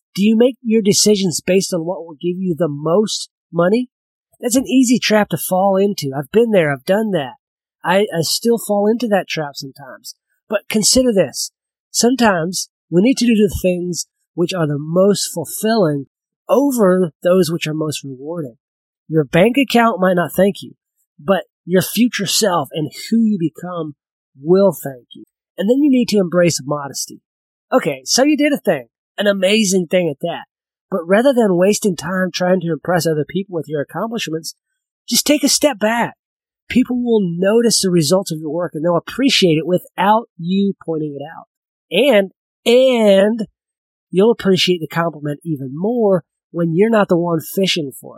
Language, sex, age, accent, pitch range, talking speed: English, male, 40-59, American, 165-220 Hz, 175 wpm